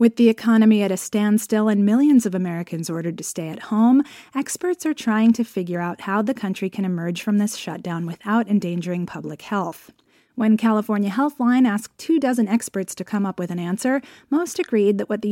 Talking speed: 200 wpm